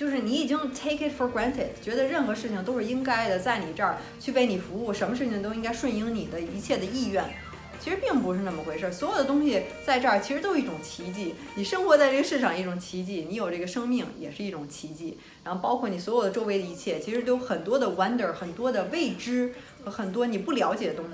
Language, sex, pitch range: Chinese, female, 190-265 Hz